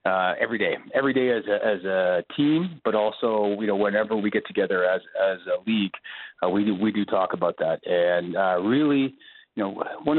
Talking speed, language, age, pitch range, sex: 210 wpm, English, 30-49, 100-125 Hz, male